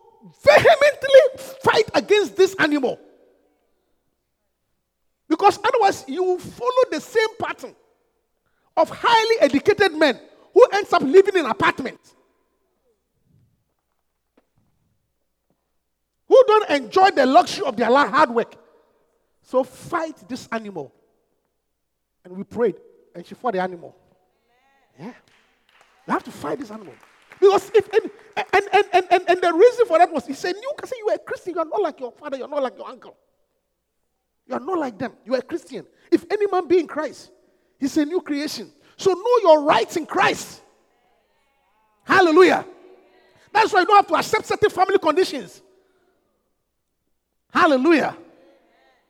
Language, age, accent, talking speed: English, 40-59, Nigerian, 140 wpm